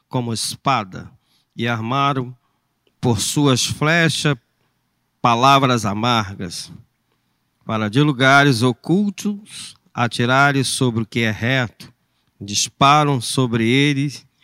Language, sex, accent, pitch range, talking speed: Portuguese, male, Brazilian, 120-155 Hz, 90 wpm